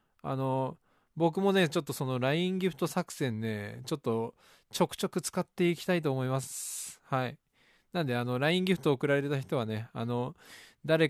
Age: 20-39